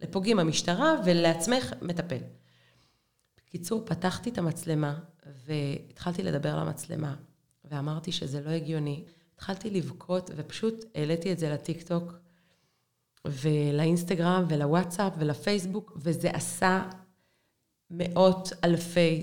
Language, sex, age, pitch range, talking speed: Hebrew, female, 30-49, 160-195 Hz, 95 wpm